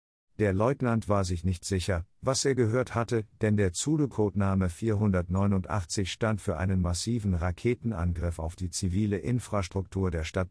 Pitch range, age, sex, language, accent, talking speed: 95-120 Hz, 50-69, male, French, German, 150 wpm